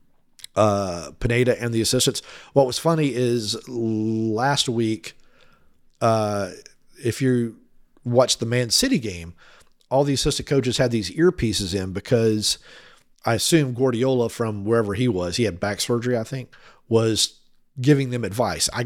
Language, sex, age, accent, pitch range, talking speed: English, male, 40-59, American, 100-125 Hz, 145 wpm